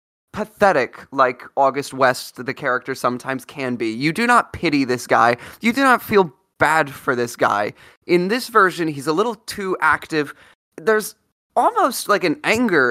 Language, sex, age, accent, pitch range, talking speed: English, male, 20-39, American, 125-165 Hz, 165 wpm